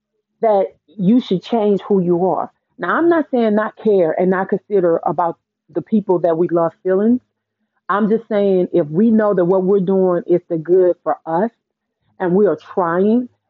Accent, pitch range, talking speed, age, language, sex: American, 170-200 Hz, 185 wpm, 40-59, English, female